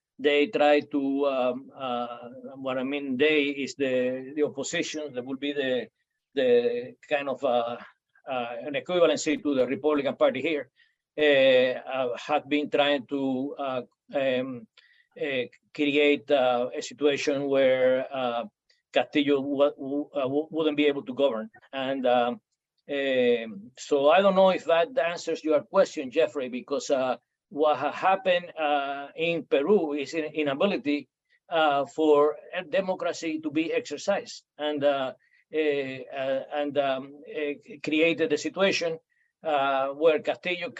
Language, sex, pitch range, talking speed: English, male, 140-165 Hz, 140 wpm